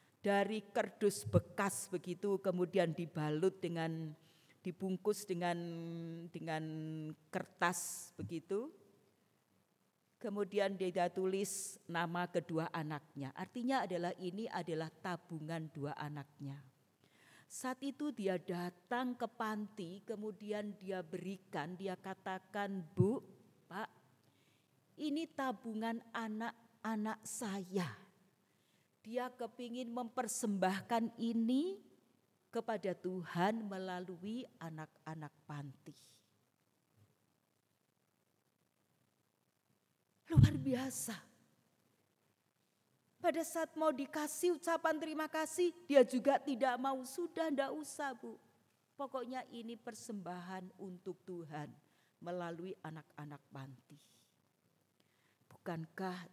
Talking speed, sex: 85 wpm, female